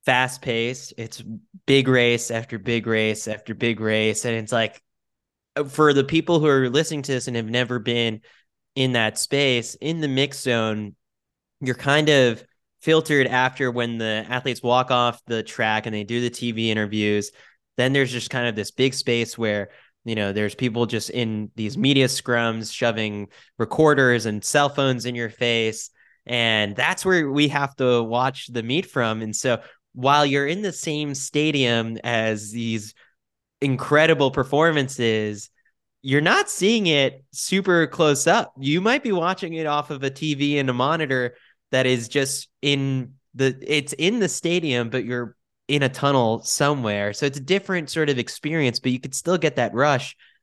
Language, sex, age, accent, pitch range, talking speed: English, male, 10-29, American, 115-145 Hz, 175 wpm